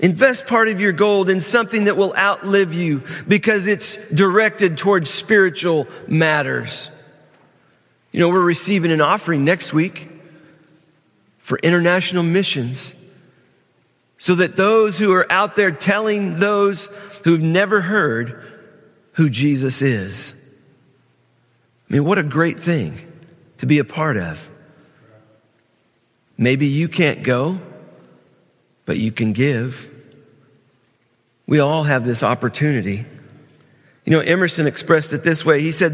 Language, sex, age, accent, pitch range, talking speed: English, male, 40-59, American, 135-185 Hz, 125 wpm